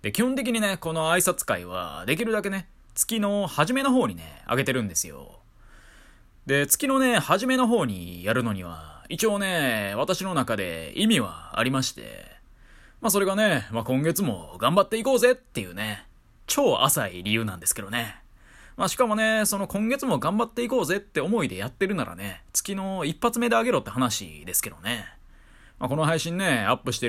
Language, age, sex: Japanese, 20-39, male